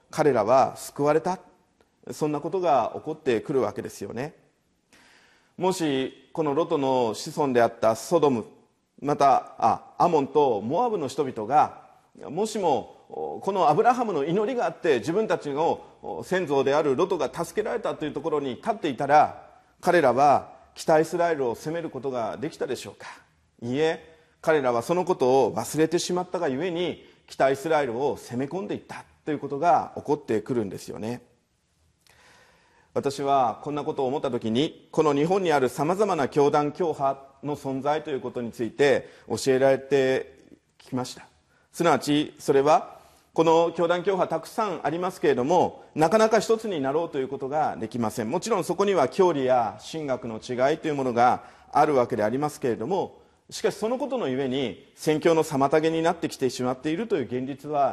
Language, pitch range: Japanese, 130-170 Hz